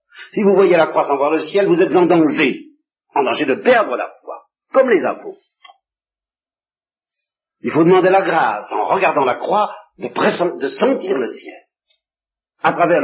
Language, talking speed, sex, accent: French, 180 wpm, male, French